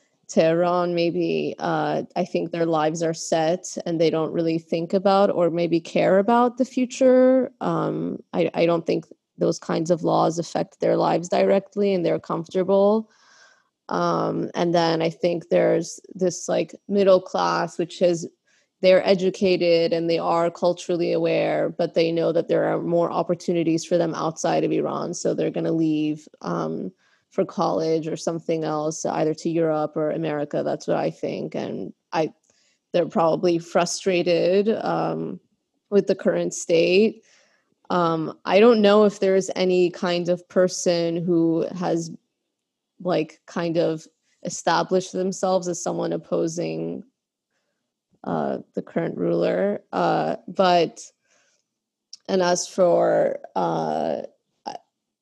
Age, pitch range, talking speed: 20-39, 165-190 Hz, 140 wpm